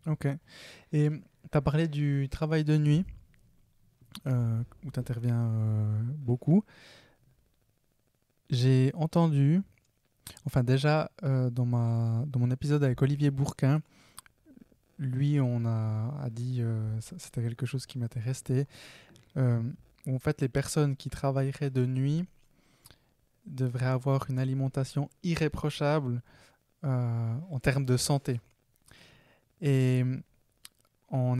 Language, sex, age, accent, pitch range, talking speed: French, male, 20-39, French, 120-145 Hz, 115 wpm